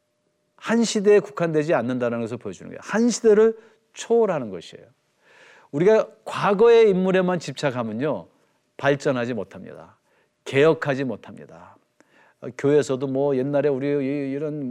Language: Korean